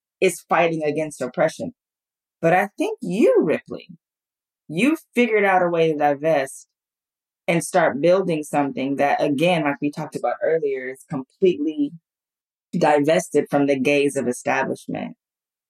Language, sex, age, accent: English, female, 20-39, American